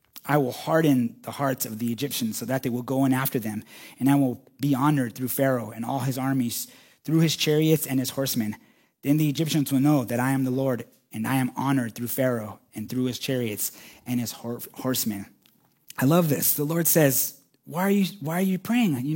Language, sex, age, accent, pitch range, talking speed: English, male, 30-49, American, 125-170 Hz, 220 wpm